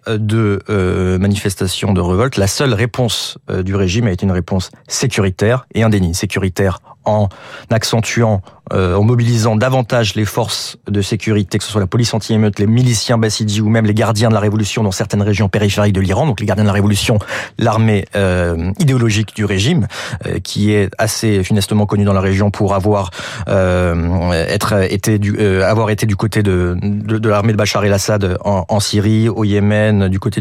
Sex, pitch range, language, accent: male, 100-125 Hz, French, French